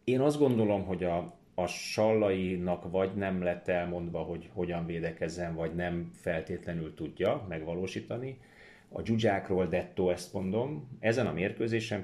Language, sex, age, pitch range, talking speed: Hungarian, male, 30-49, 90-110 Hz, 135 wpm